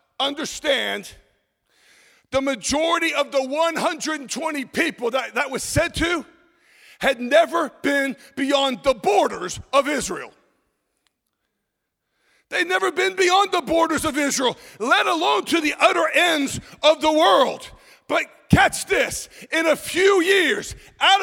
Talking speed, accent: 125 wpm, American